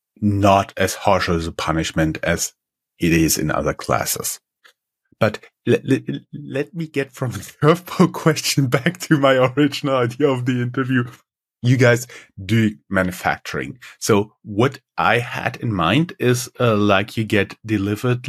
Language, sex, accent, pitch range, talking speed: English, male, German, 100-130 Hz, 150 wpm